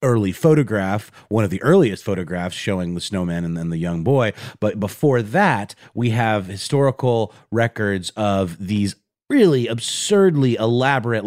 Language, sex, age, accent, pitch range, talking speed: English, male, 30-49, American, 100-130 Hz, 145 wpm